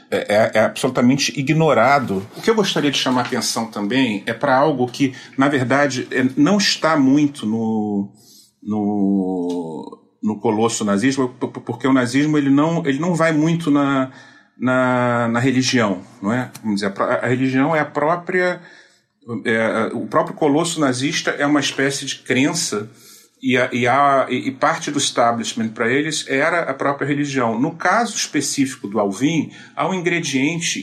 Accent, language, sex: Brazilian, Portuguese, male